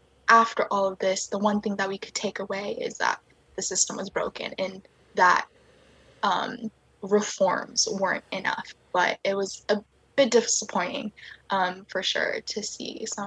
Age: 10-29